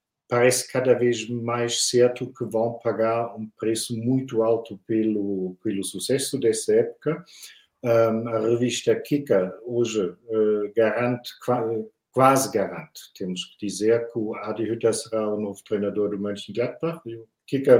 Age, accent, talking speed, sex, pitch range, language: 50-69, German, 140 wpm, male, 110-125 Hz, Portuguese